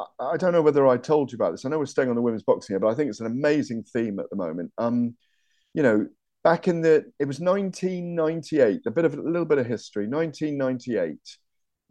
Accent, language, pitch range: British, English, 105-145 Hz